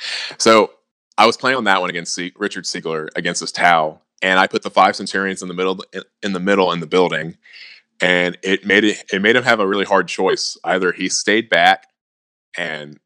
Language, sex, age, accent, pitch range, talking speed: English, male, 20-39, American, 85-95 Hz, 210 wpm